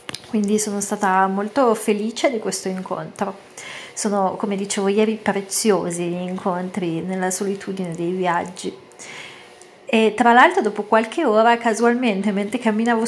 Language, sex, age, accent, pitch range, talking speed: Italian, female, 30-49, native, 190-225 Hz, 130 wpm